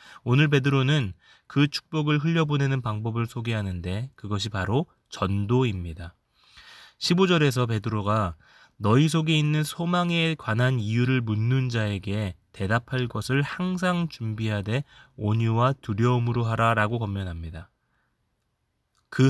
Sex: male